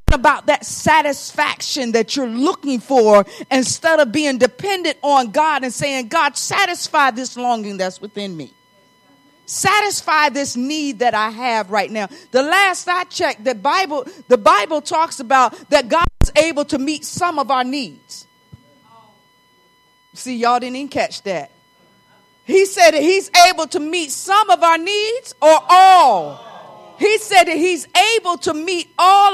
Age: 40-59